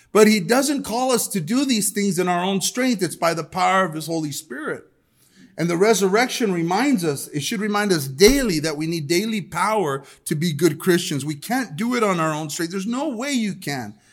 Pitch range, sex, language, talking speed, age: 155-200 Hz, male, English, 225 wpm, 40-59